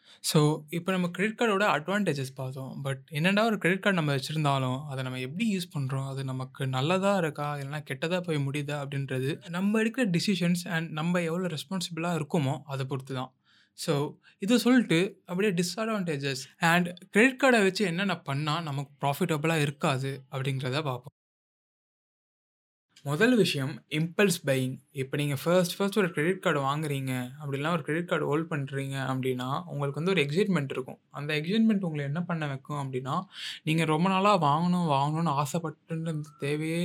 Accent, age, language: native, 20-39, Tamil